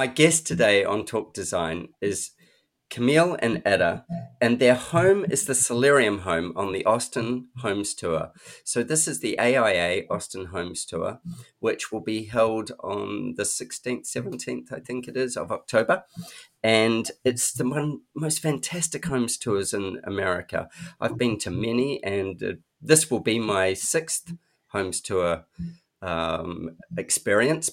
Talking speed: 145 wpm